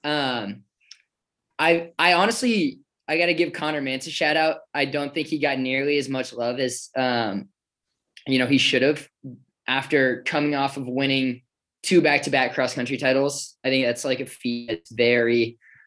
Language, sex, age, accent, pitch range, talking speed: English, male, 10-29, American, 125-150 Hz, 180 wpm